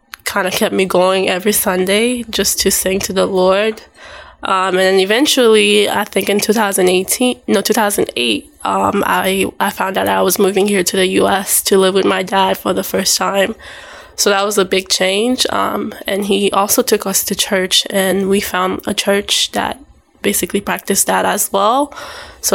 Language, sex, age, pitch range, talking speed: English, female, 10-29, 190-220 Hz, 185 wpm